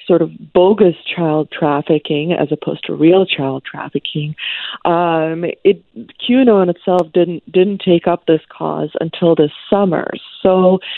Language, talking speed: English, 140 wpm